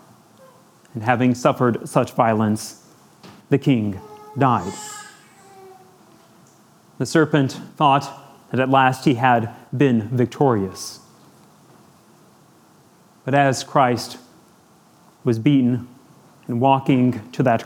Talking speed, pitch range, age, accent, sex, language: 90 wpm, 120-140 Hz, 30-49, American, male, English